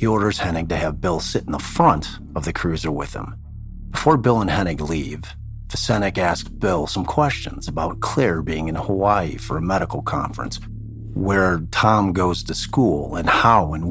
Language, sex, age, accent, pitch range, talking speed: English, male, 40-59, American, 80-105 Hz, 180 wpm